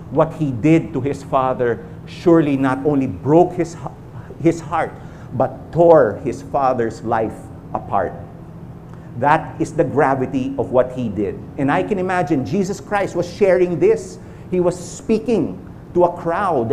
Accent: Filipino